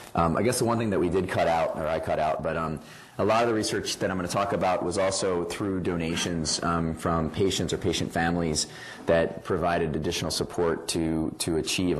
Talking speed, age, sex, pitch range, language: 225 wpm, 30-49, male, 80-95 Hz, English